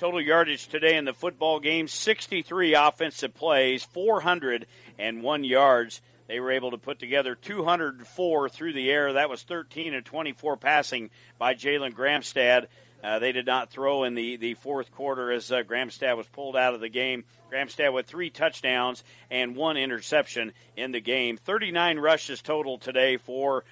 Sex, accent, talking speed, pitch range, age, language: male, American, 165 wpm, 120-150 Hz, 50-69, English